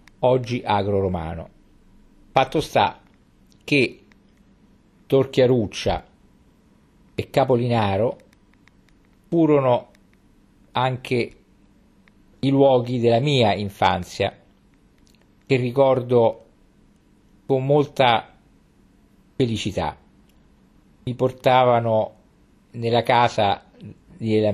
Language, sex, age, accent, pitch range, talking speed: Italian, male, 50-69, native, 105-130 Hz, 65 wpm